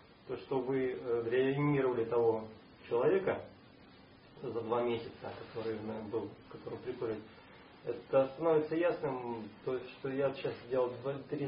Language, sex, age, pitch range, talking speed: Russian, male, 30-49, 130-175 Hz, 120 wpm